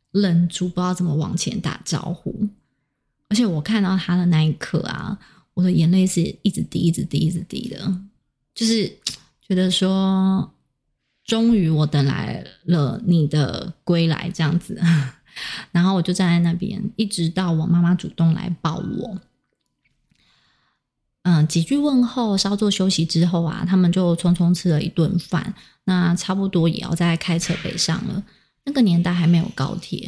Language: Chinese